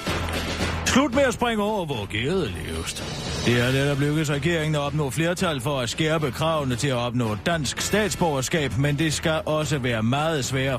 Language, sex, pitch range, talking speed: Danish, male, 110-165 Hz, 190 wpm